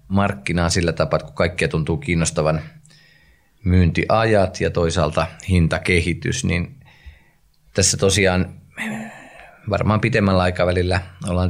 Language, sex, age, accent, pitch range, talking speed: Finnish, male, 30-49, native, 80-100 Hz, 95 wpm